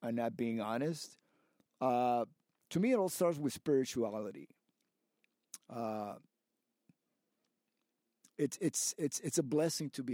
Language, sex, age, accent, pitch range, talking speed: English, male, 50-69, American, 120-145 Hz, 125 wpm